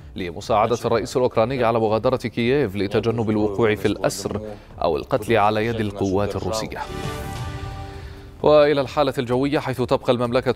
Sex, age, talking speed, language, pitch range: male, 30-49, 125 wpm, Arabic, 110-130 Hz